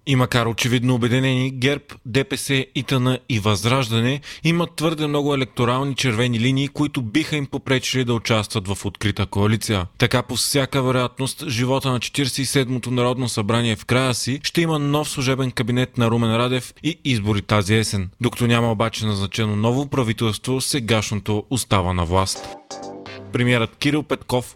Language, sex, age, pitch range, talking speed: Bulgarian, male, 30-49, 110-135 Hz, 150 wpm